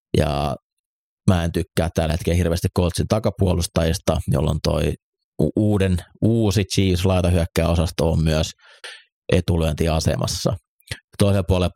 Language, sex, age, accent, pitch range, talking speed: Finnish, male, 30-49, native, 80-95 Hz, 95 wpm